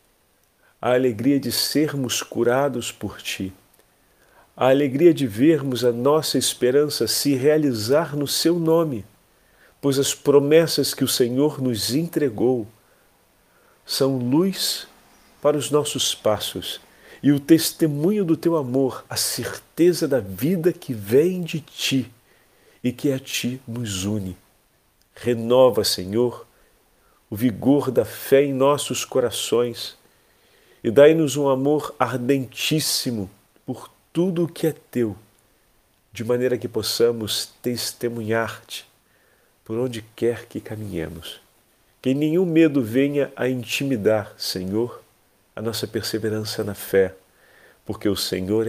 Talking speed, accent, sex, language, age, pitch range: 120 wpm, Brazilian, male, Portuguese, 40-59, 110-140 Hz